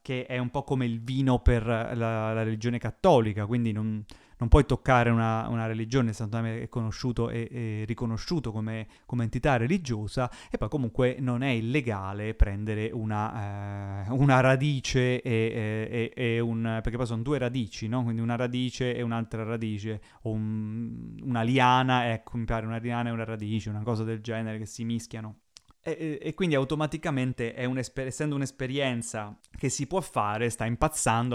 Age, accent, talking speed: 30-49, native, 170 wpm